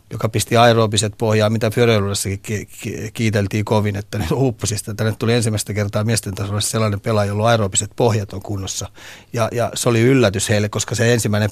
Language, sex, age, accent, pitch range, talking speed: Finnish, male, 30-49, native, 105-120 Hz, 170 wpm